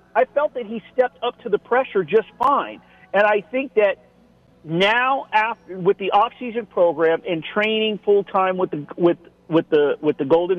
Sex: male